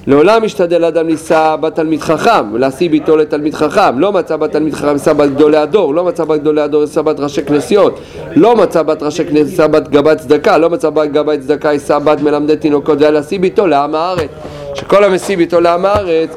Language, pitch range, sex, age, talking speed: Hebrew, 135-175 Hz, male, 40-59, 160 wpm